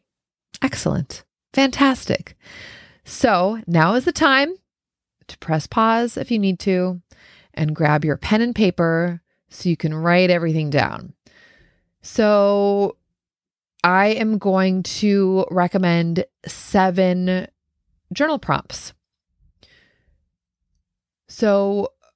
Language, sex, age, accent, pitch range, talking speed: English, female, 30-49, American, 145-195 Hz, 95 wpm